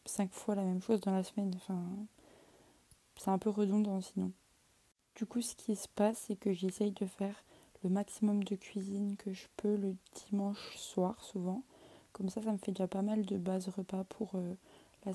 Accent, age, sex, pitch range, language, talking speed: French, 20-39, female, 185-210 Hz, French, 200 wpm